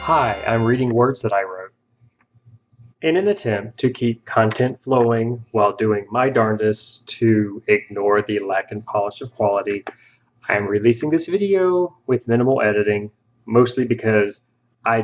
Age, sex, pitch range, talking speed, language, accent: 30-49, male, 110-125 Hz, 145 wpm, English, American